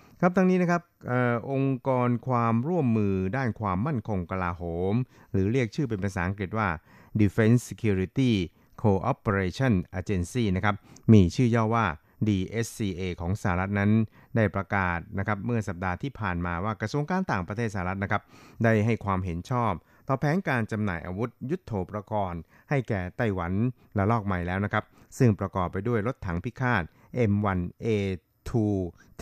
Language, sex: Thai, male